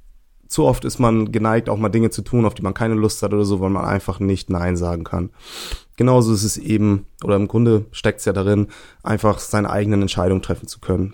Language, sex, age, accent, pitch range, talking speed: German, male, 20-39, German, 95-110 Hz, 225 wpm